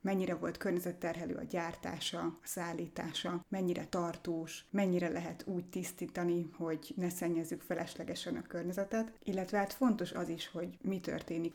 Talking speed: 140 wpm